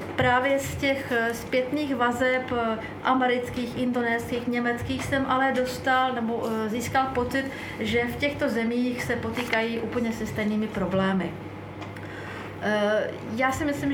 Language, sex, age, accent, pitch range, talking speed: Czech, female, 40-59, native, 225-265 Hz, 115 wpm